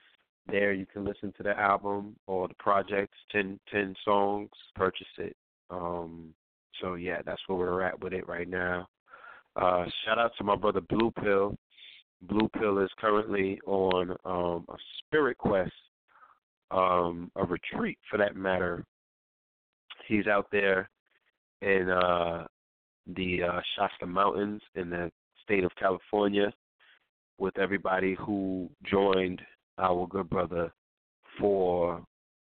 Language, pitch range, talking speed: English, 90-100 Hz, 130 wpm